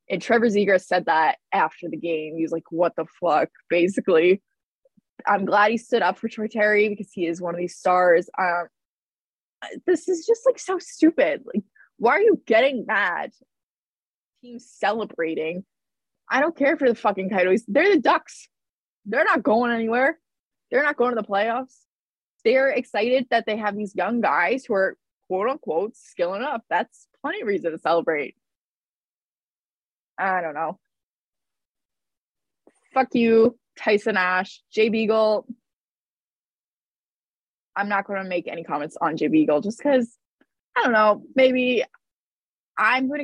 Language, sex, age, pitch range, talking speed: English, female, 20-39, 180-245 Hz, 155 wpm